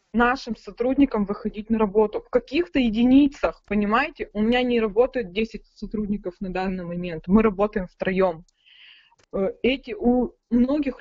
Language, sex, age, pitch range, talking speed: Russian, female, 20-39, 195-240 Hz, 130 wpm